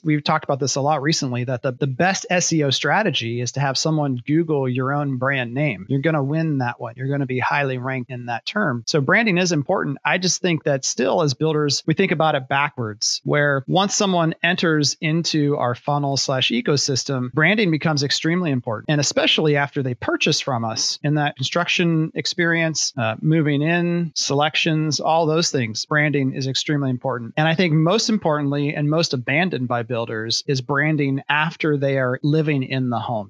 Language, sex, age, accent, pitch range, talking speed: English, male, 30-49, American, 135-160 Hz, 195 wpm